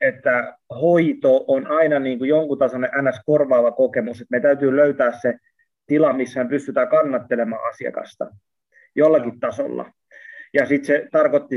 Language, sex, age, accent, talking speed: Finnish, male, 30-49, native, 135 wpm